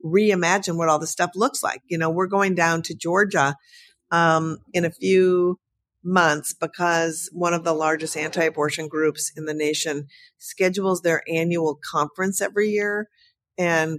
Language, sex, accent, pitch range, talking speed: English, female, American, 155-190 Hz, 155 wpm